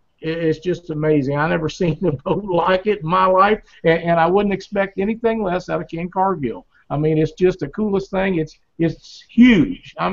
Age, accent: 50-69, American